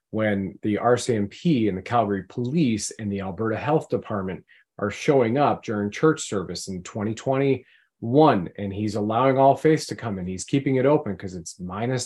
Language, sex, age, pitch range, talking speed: English, male, 30-49, 100-130 Hz, 175 wpm